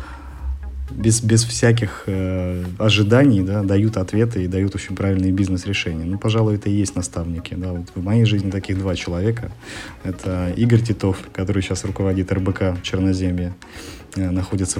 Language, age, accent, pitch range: Russian, 30-49, native, 90-105 Hz